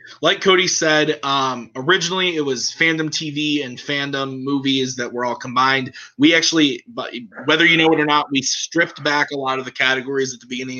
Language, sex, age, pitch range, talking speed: English, male, 20-39, 125-165 Hz, 195 wpm